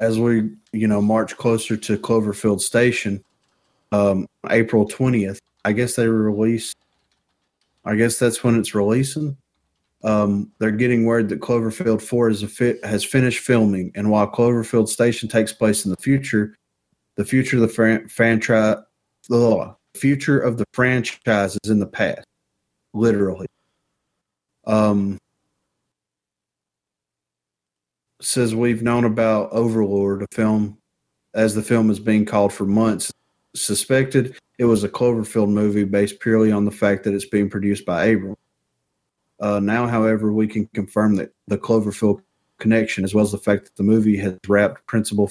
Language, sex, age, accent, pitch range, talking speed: English, male, 30-49, American, 100-115 Hz, 150 wpm